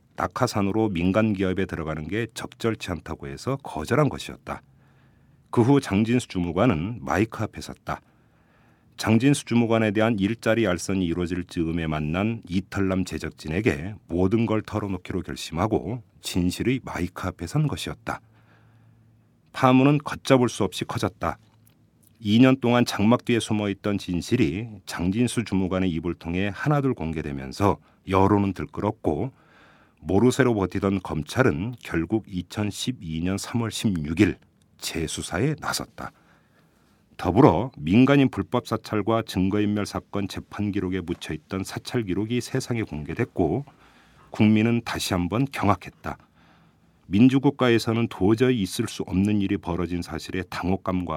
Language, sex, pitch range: Korean, male, 90-115 Hz